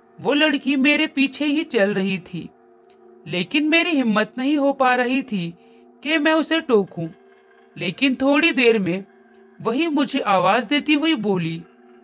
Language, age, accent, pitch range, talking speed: Hindi, 40-59, native, 175-285 Hz, 150 wpm